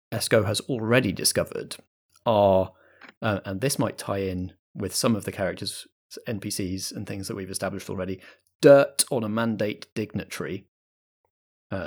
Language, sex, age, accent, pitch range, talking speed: English, male, 30-49, British, 95-120 Hz, 145 wpm